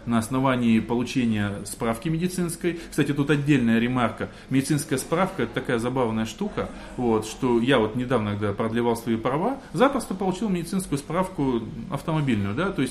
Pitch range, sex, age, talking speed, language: 125-180 Hz, male, 20-39, 155 wpm, Russian